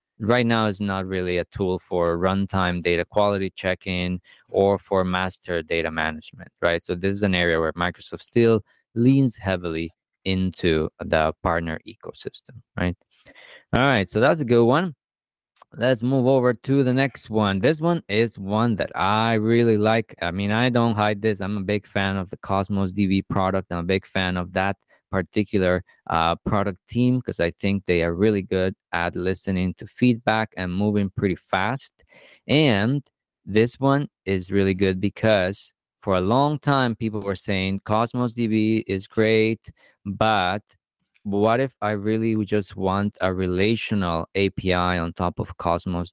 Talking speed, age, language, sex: 165 wpm, 20-39, English, male